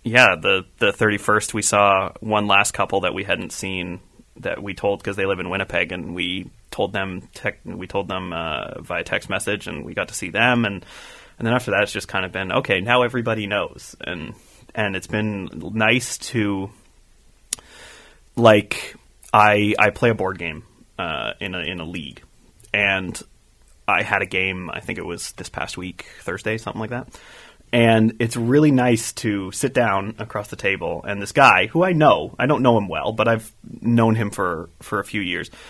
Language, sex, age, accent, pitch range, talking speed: English, male, 30-49, American, 95-120 Hz, 200 wpm